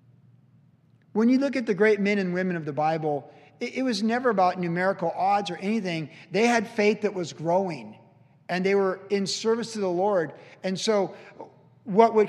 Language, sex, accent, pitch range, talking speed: English, male, American, 175-240 Hz, 185 wpm